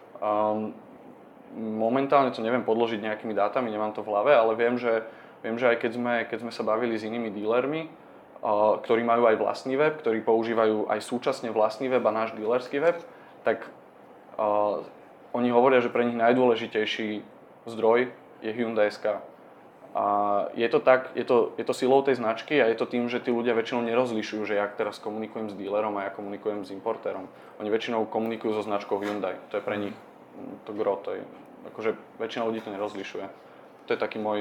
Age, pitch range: 20-39, 105-120 Hz